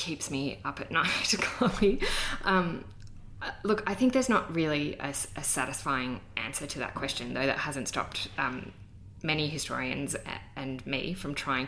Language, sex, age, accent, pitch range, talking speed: English, female, 10-29, Australian, 125-155 Hz, 155 wpm